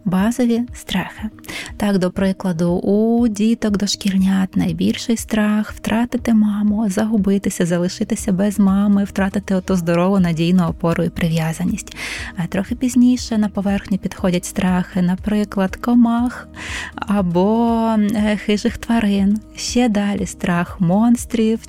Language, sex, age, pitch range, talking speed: Ukrainian, female, 20-39, 185-215 Hz, 105 wpm